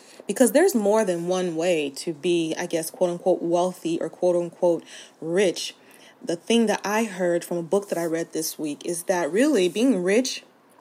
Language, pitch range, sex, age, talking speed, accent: English, 175-210 Hz, female, 30-49, 195 wpm, American